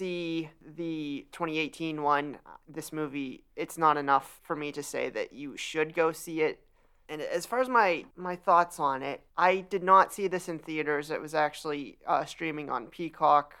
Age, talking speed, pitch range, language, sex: 30-49, 185 wpm, 150-170 Hz, English, male